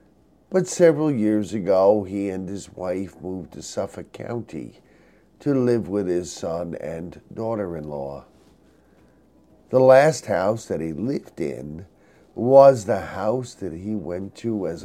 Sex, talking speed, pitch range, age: male, 135 wpm, 90-115 Hz, 50-69